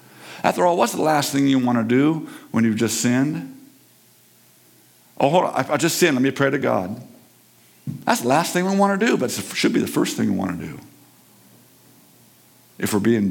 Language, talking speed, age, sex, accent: English, 215 wpm, 50-69, male, American